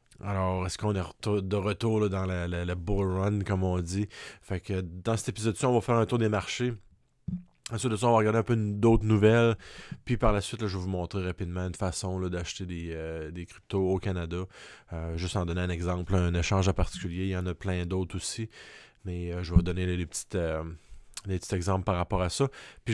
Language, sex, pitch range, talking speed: French, male, 90-110 Hz, 240 wpm